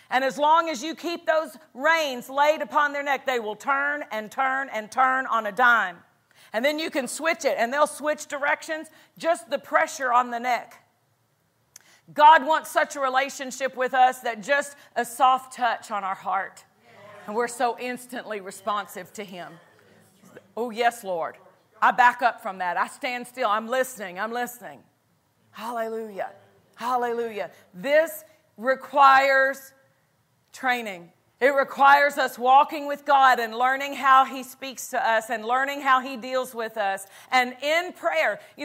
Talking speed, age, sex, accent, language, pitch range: 160 wpm, 40-59, female, American, English, 235-295 Hz